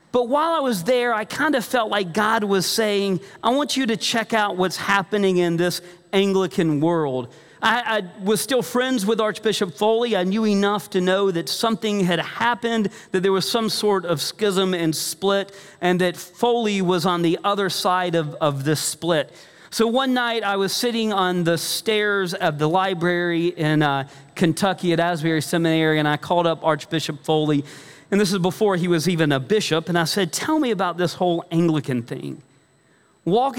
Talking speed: 190 wpm